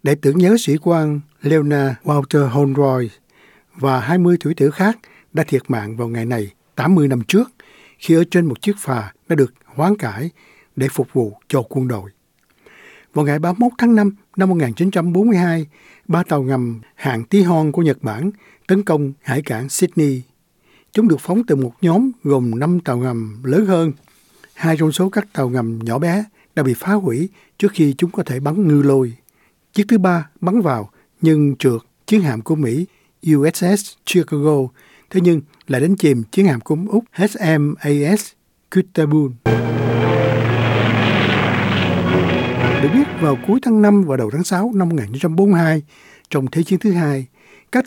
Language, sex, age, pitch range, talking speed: Vietnamese, male, 60-79, 135-190 Hz, 165 wpm